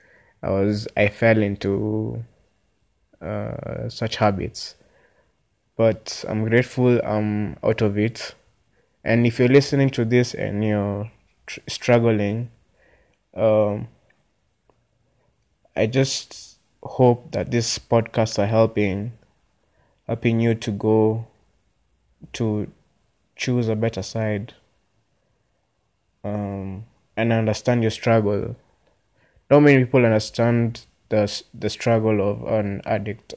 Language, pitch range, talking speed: English, 105-120 Hz, 105 wpm